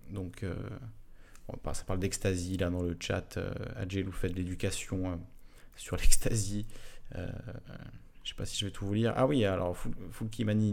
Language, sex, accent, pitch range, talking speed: French, male, French, 100-130 Hz, 190 wpm